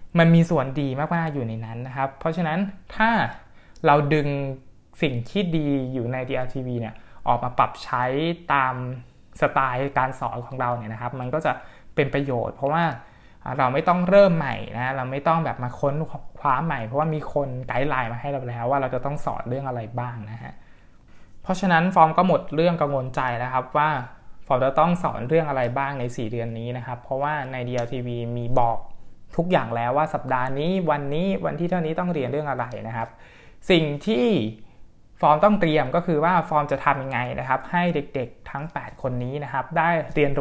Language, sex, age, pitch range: Thai, male, 20-39, 125-160 Hz